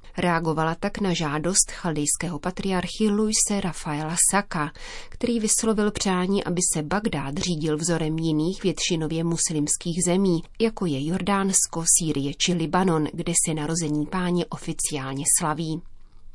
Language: Czech